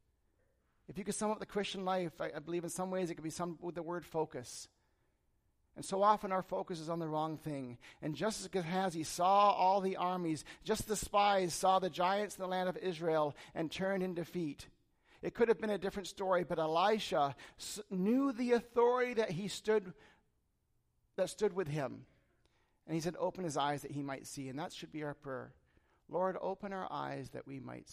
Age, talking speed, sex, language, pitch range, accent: 40-59, 210 wpm, male, English, 145-185 Hz, American